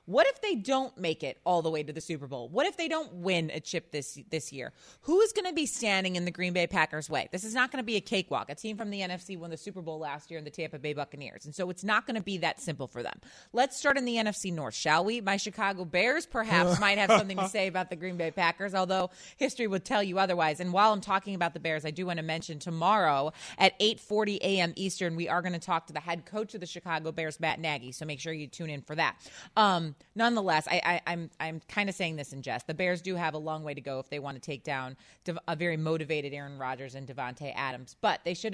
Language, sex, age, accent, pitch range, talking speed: English, female, 30-49, American, 150-195 Hz, 275 wpm